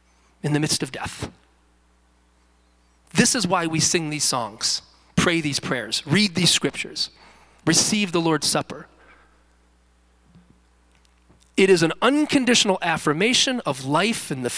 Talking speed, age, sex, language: 130 wpm, 40-59, male, English